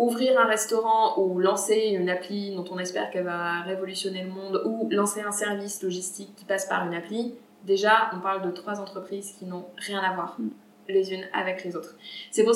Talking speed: 205 wpm